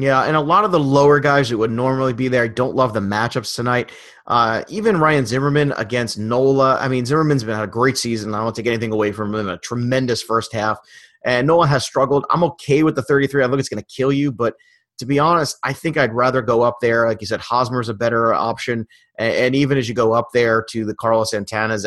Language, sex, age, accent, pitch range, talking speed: English, male, 30-49, American, 110-140 Hz, 245 wpm